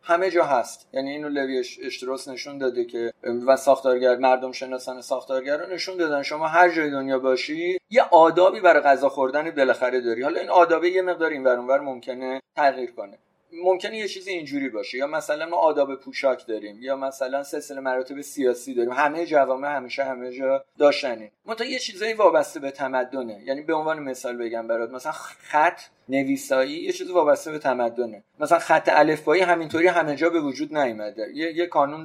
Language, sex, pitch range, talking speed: Persian, male, 130-165 Hz, 180 wpm